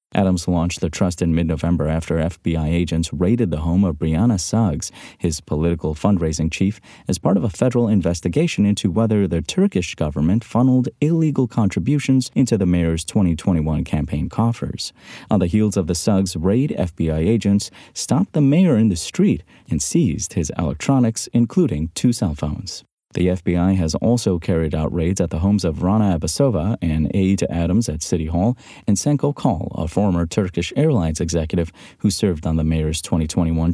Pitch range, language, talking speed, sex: 85-110 Hz, English, 170 wpm, male